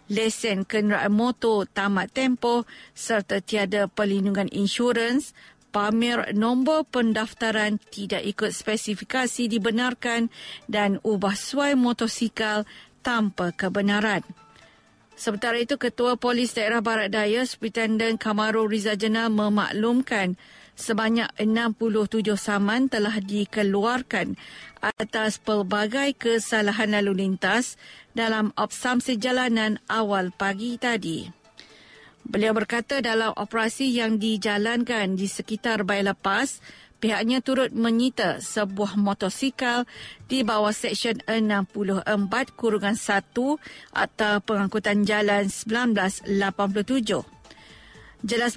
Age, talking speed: 50-69, 90 wpm